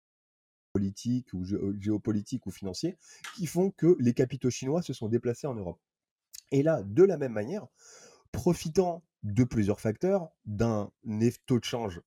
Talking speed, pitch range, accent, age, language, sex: 150 wpm, 105-130 Hz, French, 30-49, French, male